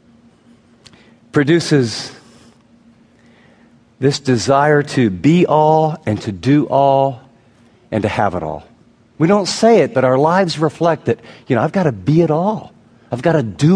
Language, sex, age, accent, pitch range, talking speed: English, male, 40-59, American, 115-145 Hz, 155 wpm